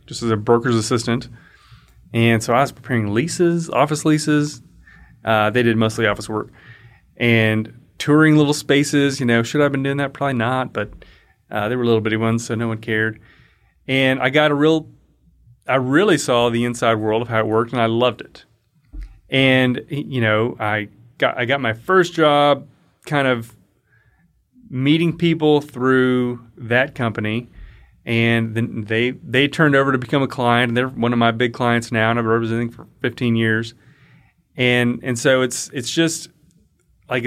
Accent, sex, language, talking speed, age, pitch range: American, male, English, 180 wpm, 30-49, 115-135 Hz